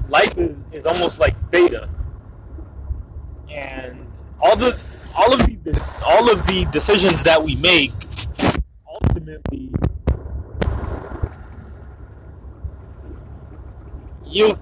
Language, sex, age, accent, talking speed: English, male, 20-39, American, 80 wpm